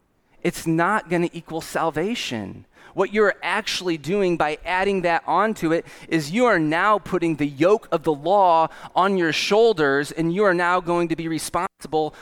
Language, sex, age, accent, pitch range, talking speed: English, male, 30-49, American, 145-175 Hz, 170 wpm